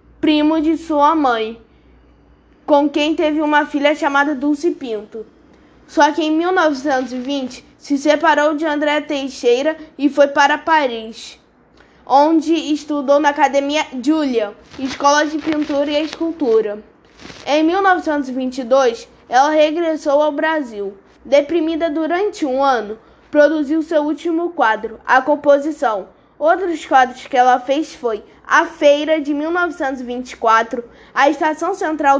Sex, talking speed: female, 120 wpm